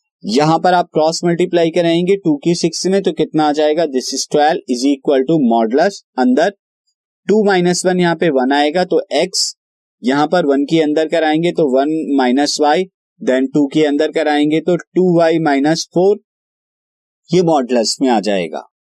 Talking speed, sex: 175 wpm, male